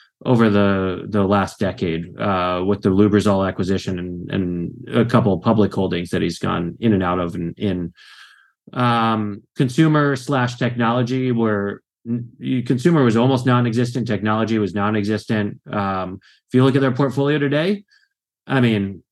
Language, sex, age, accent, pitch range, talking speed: English, male, 30-49, American, 100-130 Hz, 155 wpm